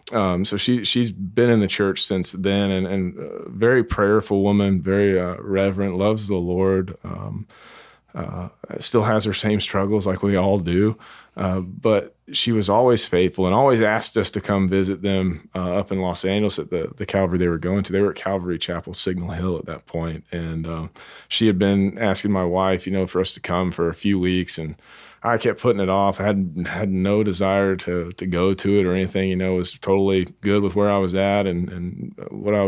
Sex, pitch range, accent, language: male, 90-105 Hz, American, English